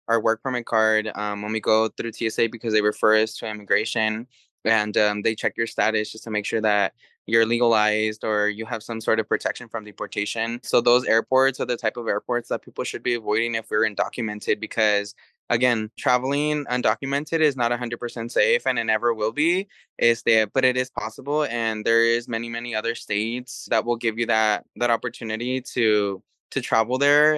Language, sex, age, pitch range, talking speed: English, male, 10-29, 110-125 Hz, 200 wpm